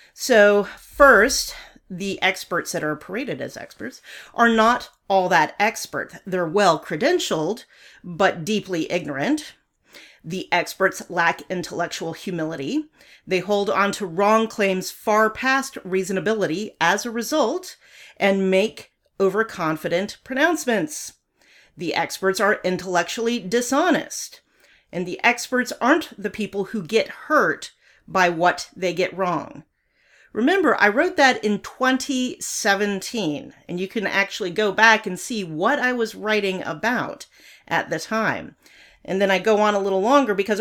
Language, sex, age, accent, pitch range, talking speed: English, female, 40-59, American, 185-255 Hz, 135 wpm